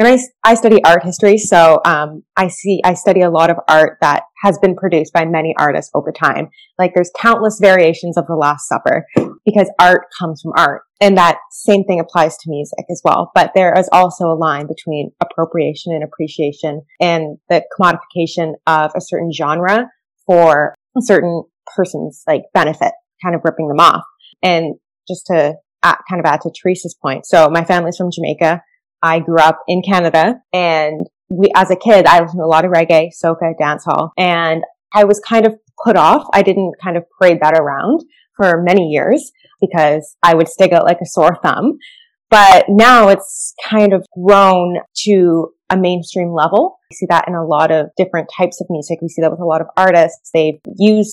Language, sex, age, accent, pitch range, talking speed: English, female, 20-39, American, 160-195 Hz, 195 wpm